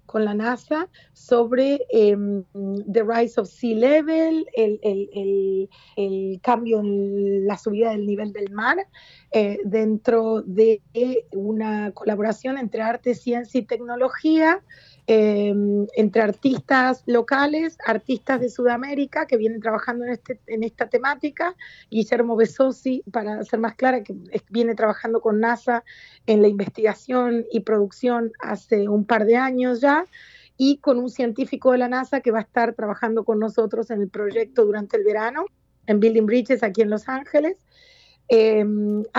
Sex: female